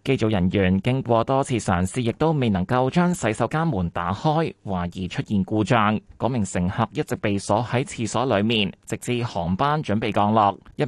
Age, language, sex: 20-39, Chinese, male